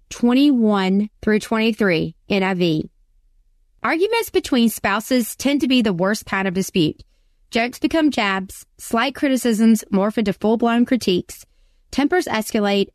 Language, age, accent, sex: English, 30-49, American, female